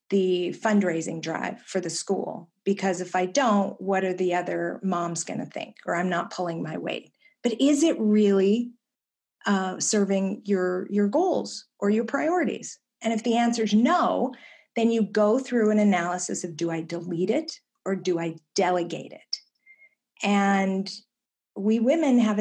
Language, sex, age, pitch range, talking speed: English, female, 50-69, 185-225 Hz, 165 wpm